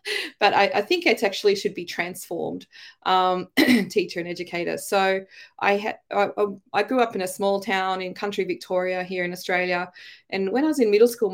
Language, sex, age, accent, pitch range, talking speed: English, female, 20-39, Australian, 180-210 Hz, 195 wpm